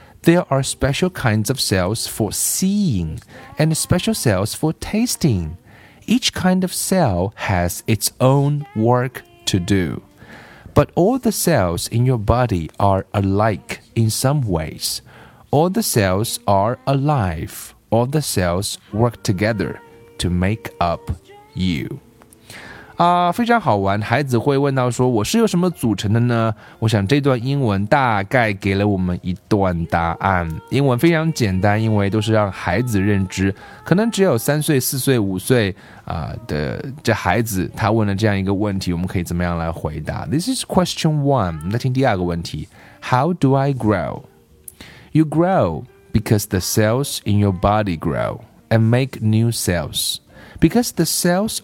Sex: male